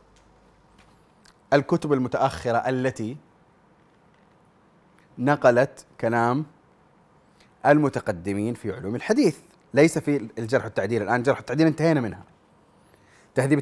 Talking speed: 85 wpm